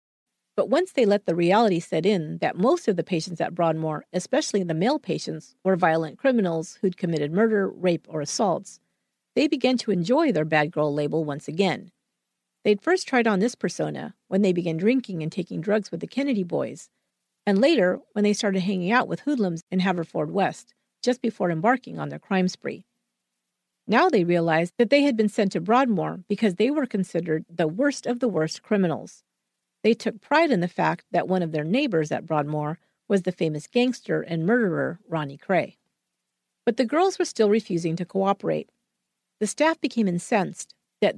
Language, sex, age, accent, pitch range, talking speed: English, female, 50-69, American, 170-240 Hz, 185 wpm